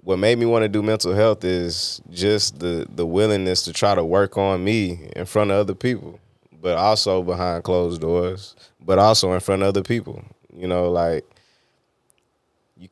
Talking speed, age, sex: 185 wpm, 20-39, male